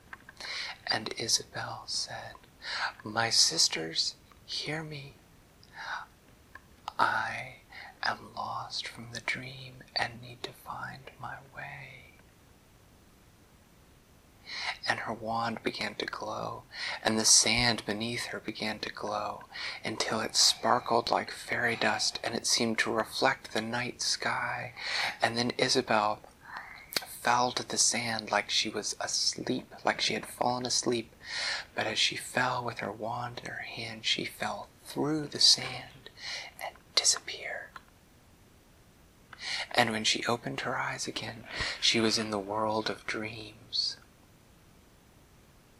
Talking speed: 125 wpm